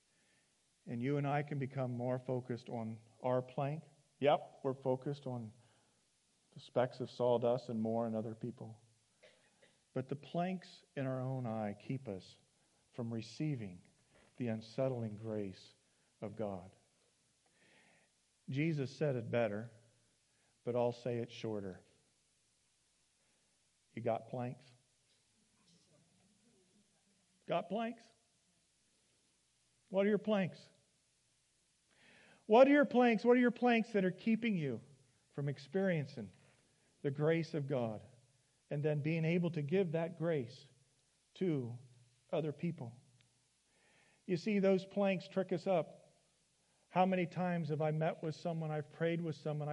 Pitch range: 120-165 Hz